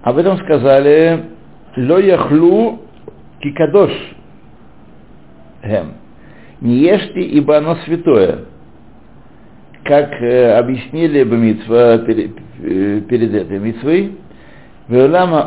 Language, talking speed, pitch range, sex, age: Russian, 95 wpm, 110-155 Hz, male, 60-79